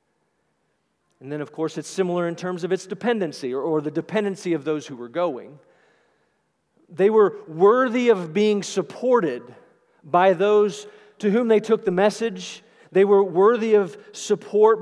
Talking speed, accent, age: 160 wpm, American, 40-59